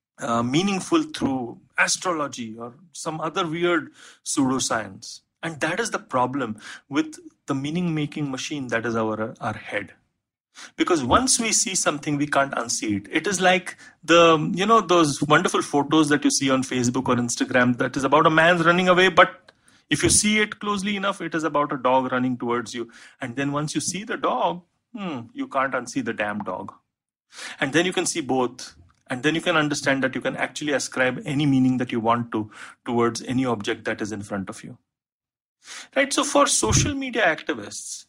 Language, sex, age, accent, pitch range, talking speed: English, male, 30-49, Indian, 120-175 Hz, 190 wpm